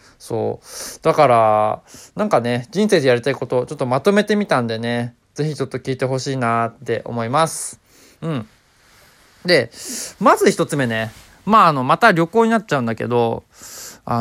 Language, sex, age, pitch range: Japanese, male, 20-39, 120-185 Hz